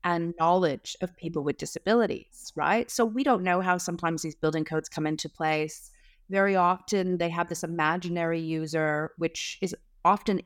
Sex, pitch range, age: female, 160-195 Hz, 30-49